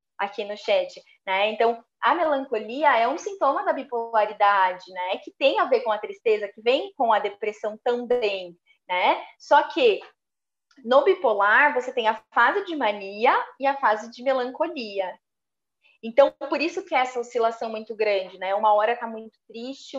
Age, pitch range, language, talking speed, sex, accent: 20-39, 205-270 Hz, Portuguese, 170 wpm, female, Brazilian